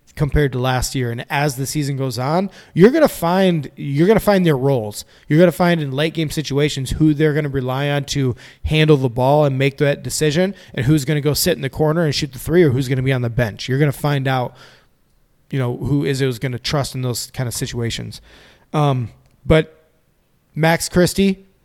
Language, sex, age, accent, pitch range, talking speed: English, male, 20-39, American, 135-155 Hz, 240 wpm